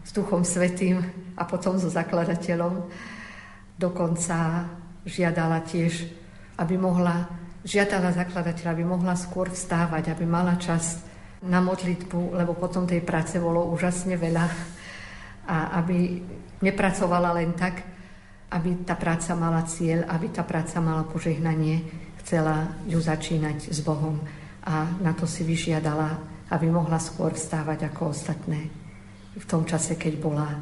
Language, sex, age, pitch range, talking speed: Slovak, female, 50-69, 160-180 Hz, 130 wpm